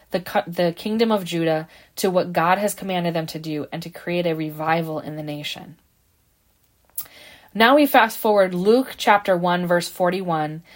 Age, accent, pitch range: 20-39, American, 165-220 Hz